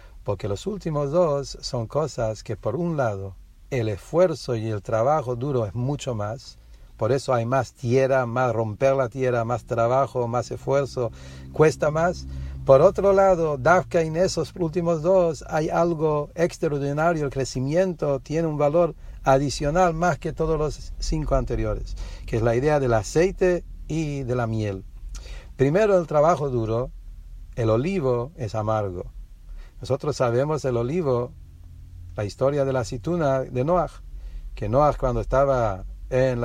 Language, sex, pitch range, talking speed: English, male, 115-155 Hz, 150 wpm